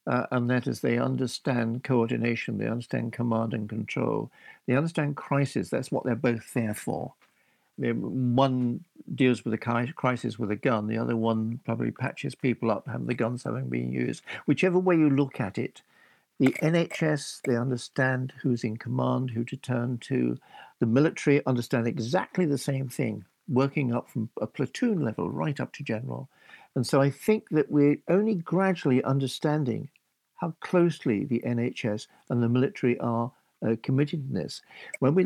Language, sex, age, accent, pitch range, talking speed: English, male, 60-79, British, 120-140 Hz, 170 wpm